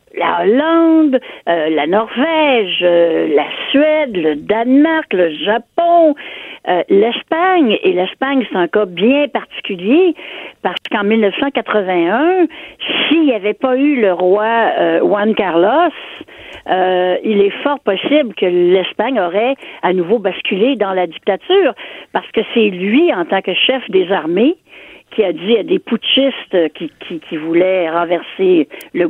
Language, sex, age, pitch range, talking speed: French, female, 60-79, 190-305 Hz, 145 wpm